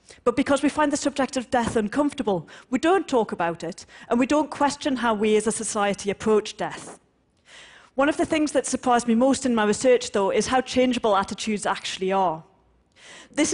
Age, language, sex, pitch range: 40-59, Chinese, female, 200-260 Hz